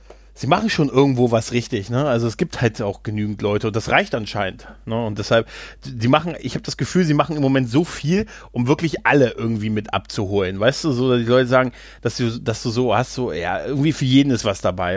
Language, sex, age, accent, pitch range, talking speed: German, male, 30-49, German, 105-145 Hz, 235 wpm